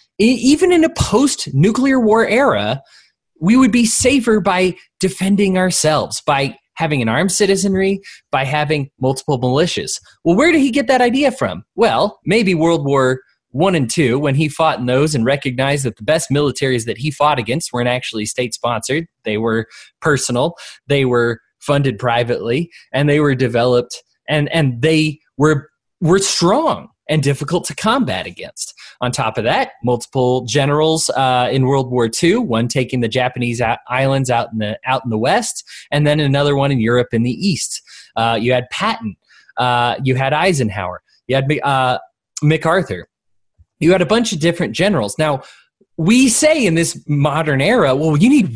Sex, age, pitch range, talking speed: male, 20-39, 125-180 Hz, 170 wpm